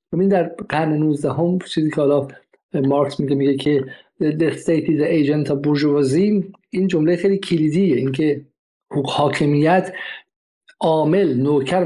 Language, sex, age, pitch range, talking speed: Persian, male, 50-69, 140-185 Hz, 135 wpm